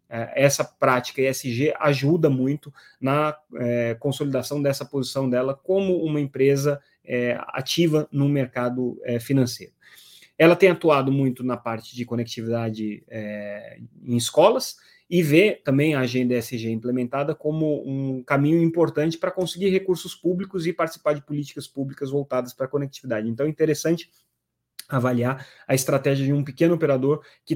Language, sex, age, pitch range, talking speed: Portuguese, male, 20-39, 120-155 Hz, 145 wpm